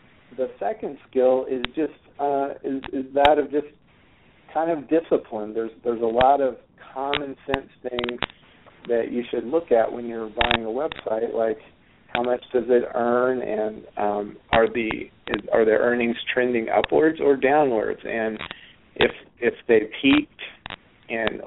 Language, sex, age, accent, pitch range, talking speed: English, male, 40-59, American, 115-140 Hz, 155 wpm